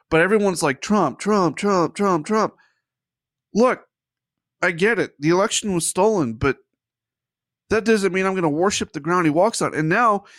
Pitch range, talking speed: 135-190 Hz, 180 wpm